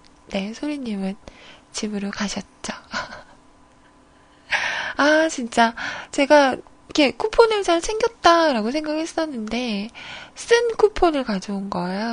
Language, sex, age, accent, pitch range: Korean, female, 20-39, native, 225-335 Hz